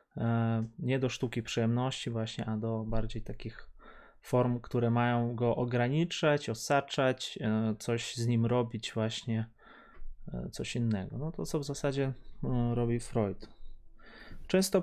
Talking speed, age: 120 wpm, 20-39